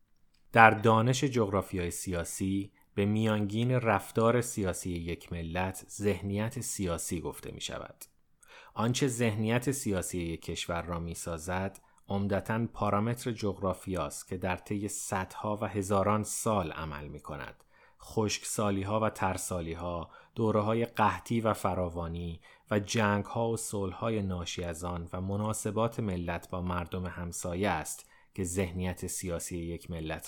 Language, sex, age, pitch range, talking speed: Persian, male, 30-49, 90-110 Hz, 125 wpm